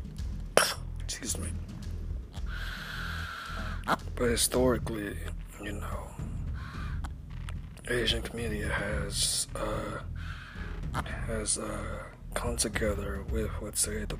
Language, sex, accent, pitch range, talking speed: English, male, American, 80-120 Hz, 70 wpm